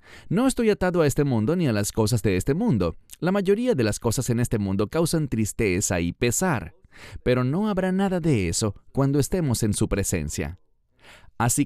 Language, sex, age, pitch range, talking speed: English, male, 30-49, 95-145 Hz, 190 wpm